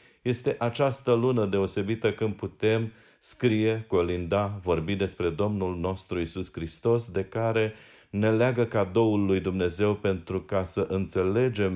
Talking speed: 130 wpm